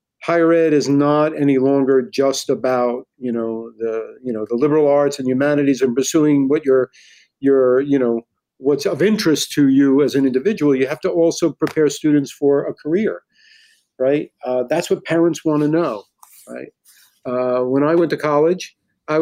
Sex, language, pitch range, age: male, English, 130-160 Hz, 50-69